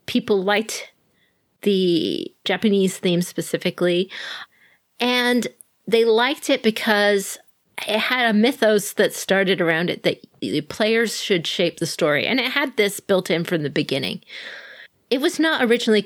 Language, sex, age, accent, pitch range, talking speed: English, female, 30-49, American, 175-220 Hz, 145 wpm